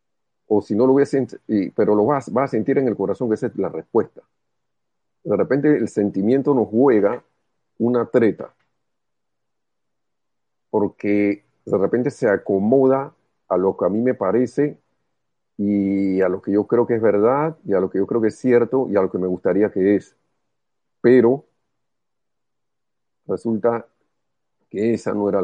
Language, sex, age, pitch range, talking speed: Spanish, male, 50-69, 100-120 Hz, 175 wpm